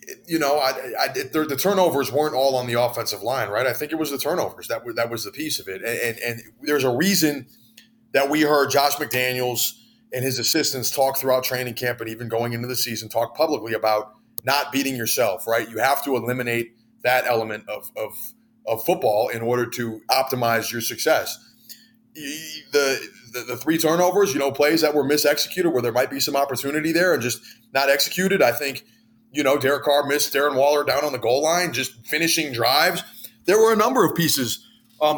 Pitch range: 125-165 Hz